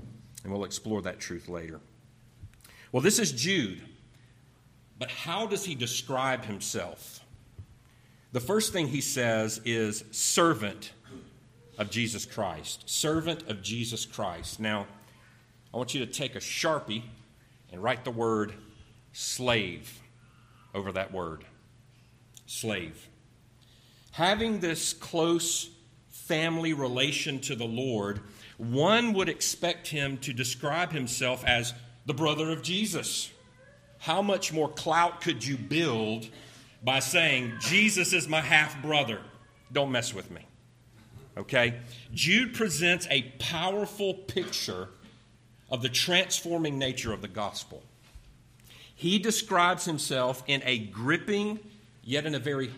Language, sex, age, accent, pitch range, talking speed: English, male, 40-59, American, 115-150 Hz, 120 wpm